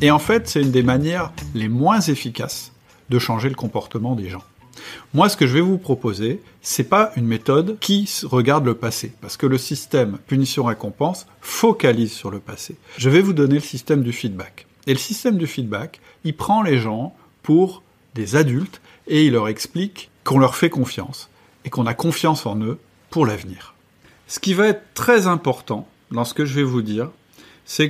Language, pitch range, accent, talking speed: French, 115-160 Hz, French, 200 wpm